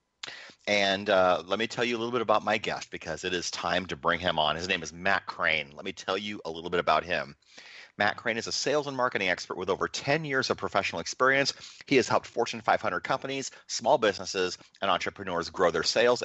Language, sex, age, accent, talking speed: English, male, 30-49, American, 230 wpm